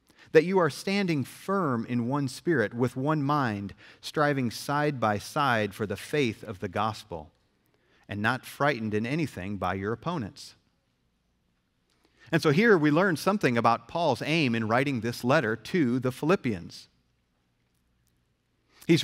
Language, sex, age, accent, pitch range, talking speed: English, male, 40-59, American, 105-155 Hz, 145 wpm